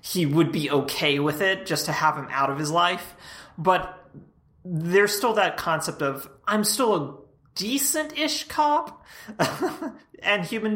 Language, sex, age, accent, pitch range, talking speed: English, male, 30-49, American, 150-205 Hz, 150 wpm